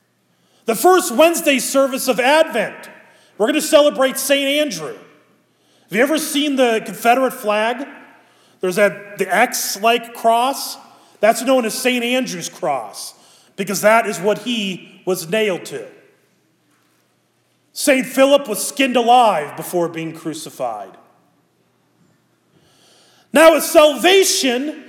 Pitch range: 245-320 Hz